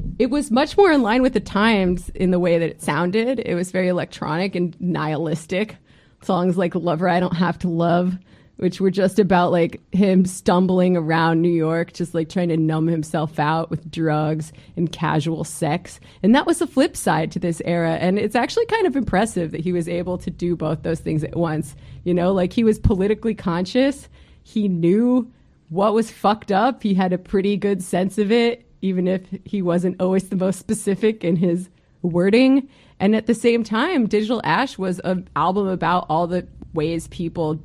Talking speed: 200 wpm